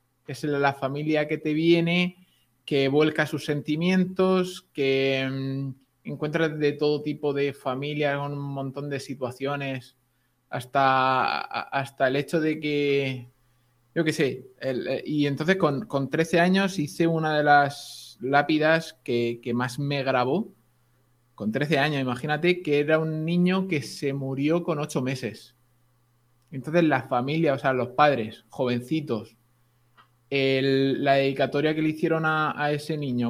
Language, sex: Spanish, male